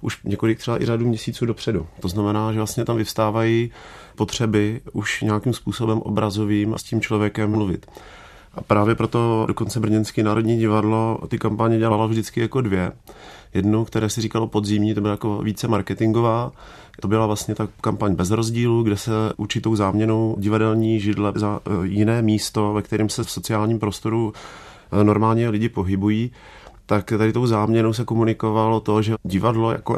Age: 40-59